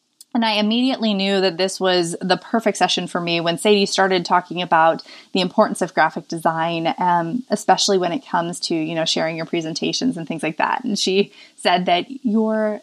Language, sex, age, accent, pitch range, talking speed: English, female, 20-39, American, 185-260 Hz, 195 wpm